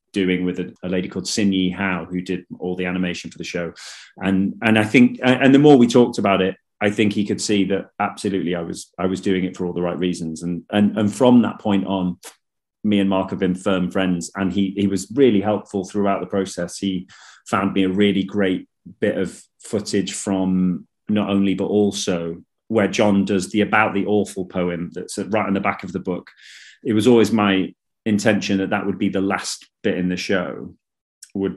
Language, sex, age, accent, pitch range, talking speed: English, male, 30-49, British, 95-105 Hz, 220 wpm